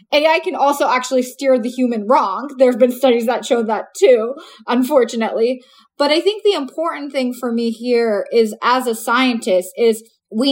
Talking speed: 185 wpm